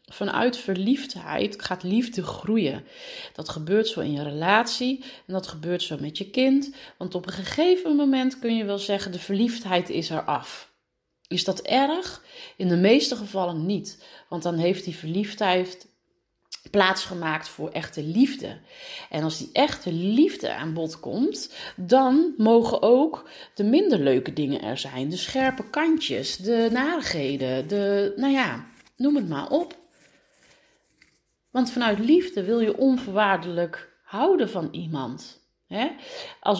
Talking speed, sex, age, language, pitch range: 145 wpm, female, 30-49, Dutch, 180-265 Hz